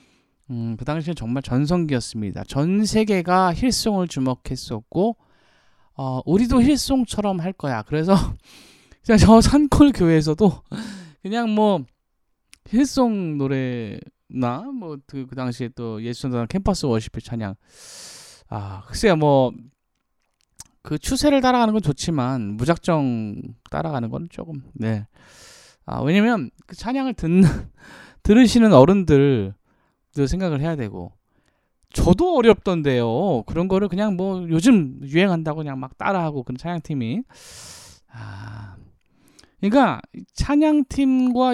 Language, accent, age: Korean, native, 20-39